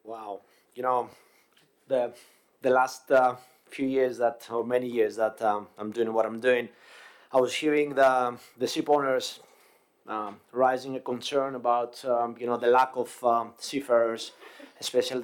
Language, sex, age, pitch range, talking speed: English, male, 30-49, 120-140 Hz, 160 wpm